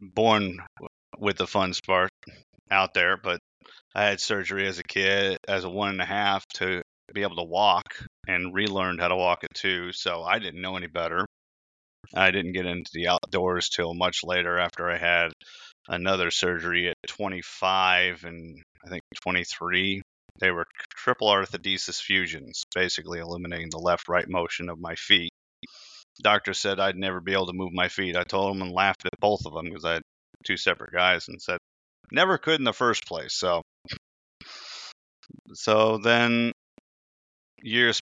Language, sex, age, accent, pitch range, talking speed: English, male, 30-49, American, 90-100 Hz, 170 wpm